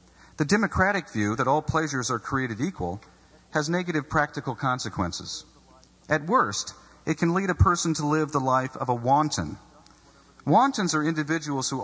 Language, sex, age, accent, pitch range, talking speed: English, male, 50-69, American, 110-155 Hz, 155 wpm